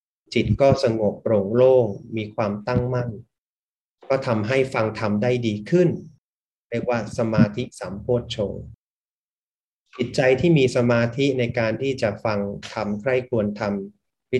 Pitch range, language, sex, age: 110-130 Hz, Thai, male, 30-49